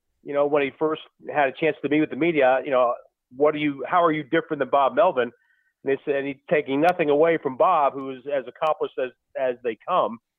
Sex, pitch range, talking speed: male, 145-175 Hz, 250 wpm